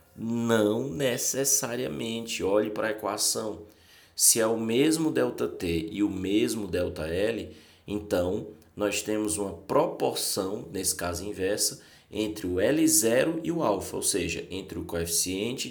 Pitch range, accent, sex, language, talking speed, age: 90-130 Hz, Brazilian, male, Portuguese, 140 wpm, 20-39